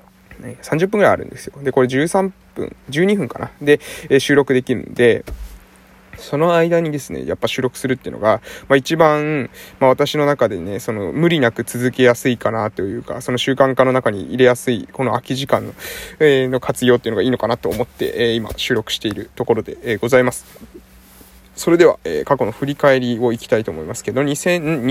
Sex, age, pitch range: male, 20-39, 120-165 Hz